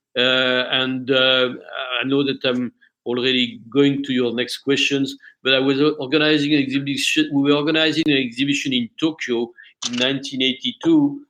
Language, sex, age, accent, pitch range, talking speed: English, male, 50-69, French, 130-155 Hz, 150 wpm